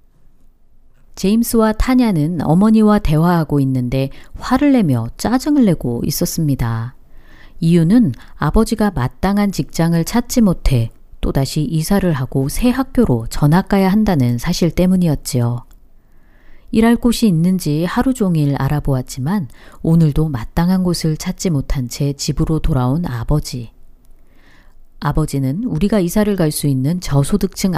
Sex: female